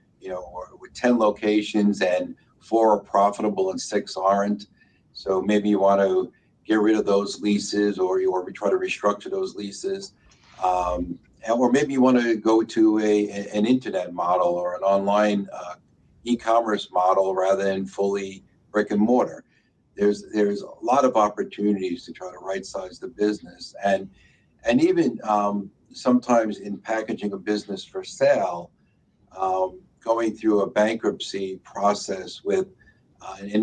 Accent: American